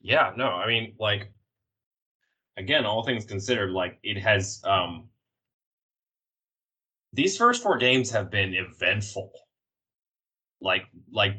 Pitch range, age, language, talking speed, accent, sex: 90-110 Hz, 20-39, English, 115 wpm, American, male